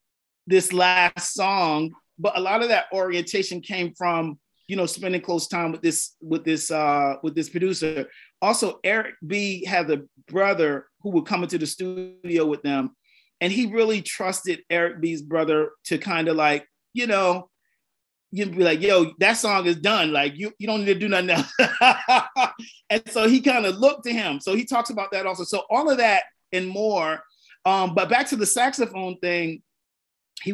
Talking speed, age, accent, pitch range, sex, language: 190 wpm, 40-59, American, 160-195 Hz, male, English